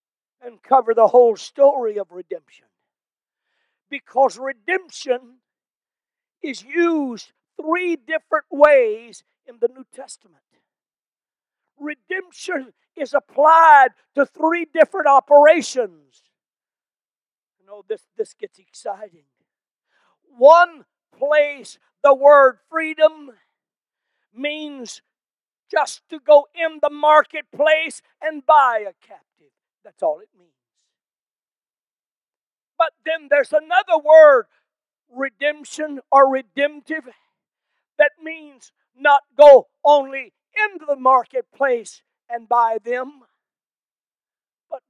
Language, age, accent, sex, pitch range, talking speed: English, 50-69, American, male, 255-325 Hz, 95 wpm